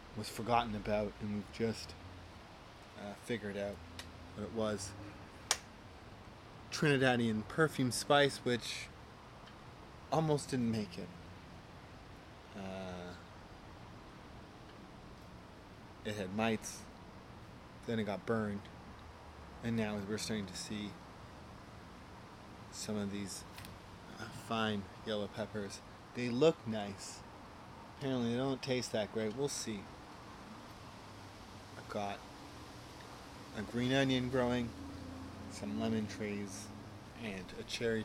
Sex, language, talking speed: male, English, 100 wpm